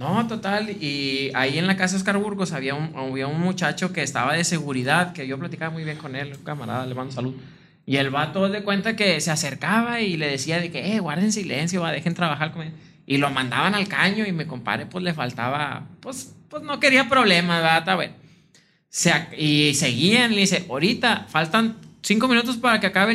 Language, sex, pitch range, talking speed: Spanish, male, 150-200 Hz, 205 wpm